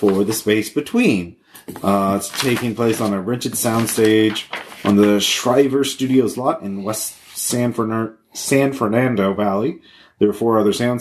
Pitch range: 100-130 Hz